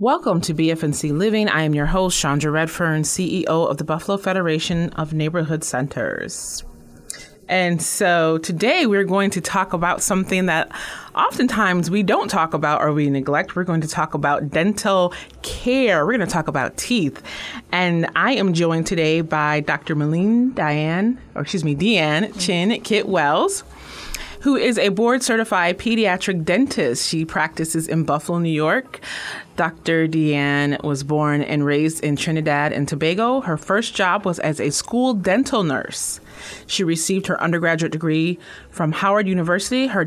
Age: 30-49